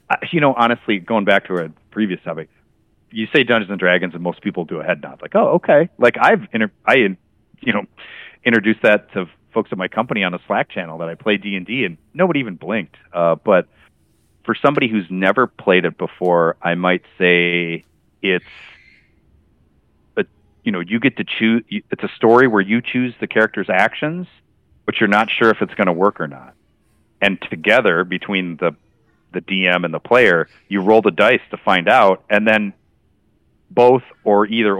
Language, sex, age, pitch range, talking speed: English, male, 40-59, 90-115 Hz, 190 wpm